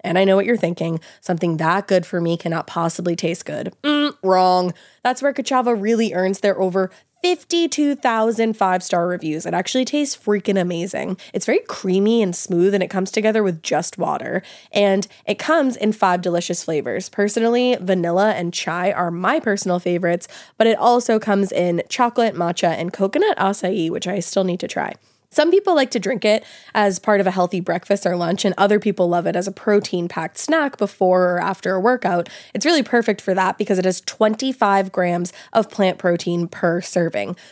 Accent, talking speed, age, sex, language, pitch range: American, 190 wpm, 20-39, female, English, 180-220 Hz